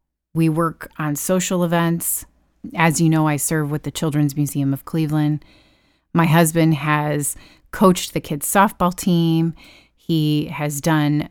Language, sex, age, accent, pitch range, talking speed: English, female, 30-49, American, 150-170 Hz, 145 wpm